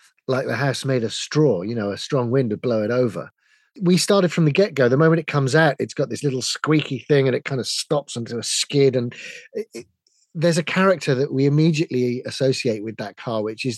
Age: 40-59